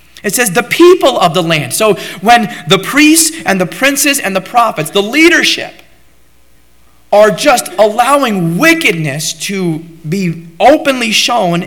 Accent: American